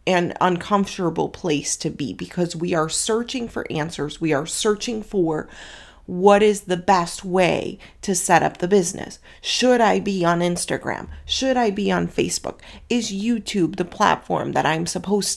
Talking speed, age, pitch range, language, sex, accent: 165 wpm, 30-49, 170-210 Hz, English, female, American